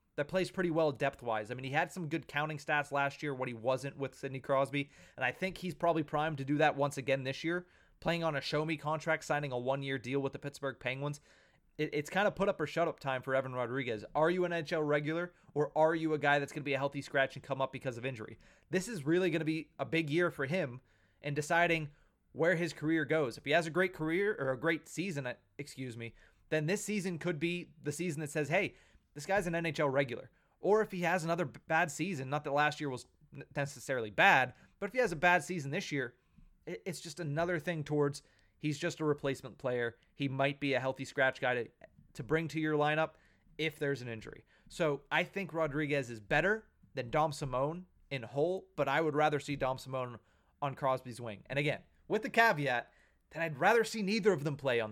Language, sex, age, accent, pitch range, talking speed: English, male, 20-39, American, 135-165 Hz, 235 wpm